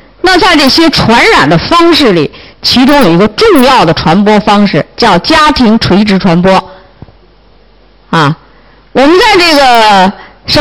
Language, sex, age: Chinese, female, 50-69